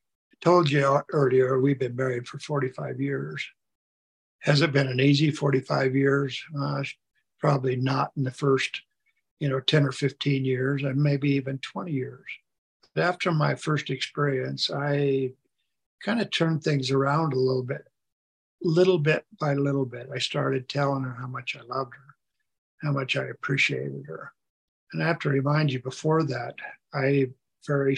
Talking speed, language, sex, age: 165 wpm, English, male, 60-79